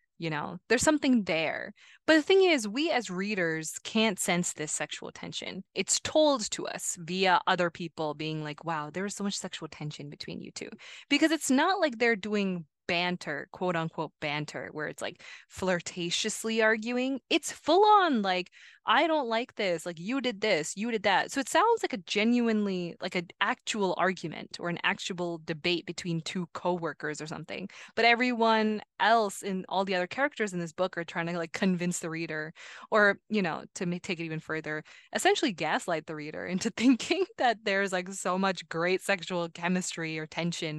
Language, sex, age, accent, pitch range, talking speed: English, female, 20-39, American, 170-230 Hz, 185 wpm